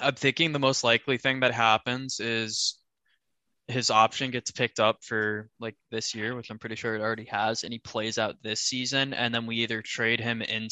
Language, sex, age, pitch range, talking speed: English, male, 10-29, 110-130 Hz, 215 wpm